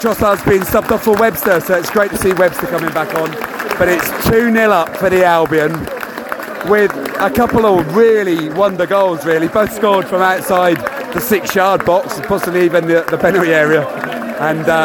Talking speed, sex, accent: 180 wpm, male, British